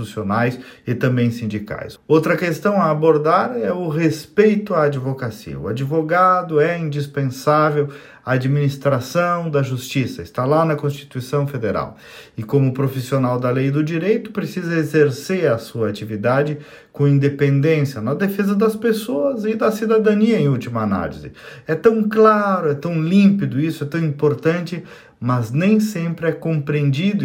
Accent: Brazilian